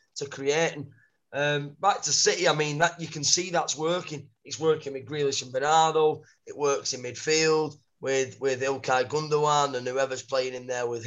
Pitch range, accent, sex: 135-150 Hz, British, male